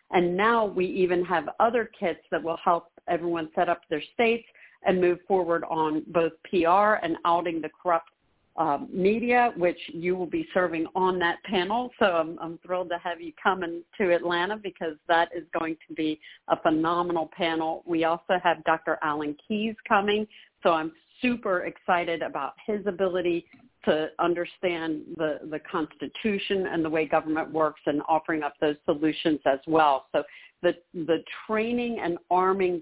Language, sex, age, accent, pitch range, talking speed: English, female, 50-69, American, 160-190 Hz, 165 wpm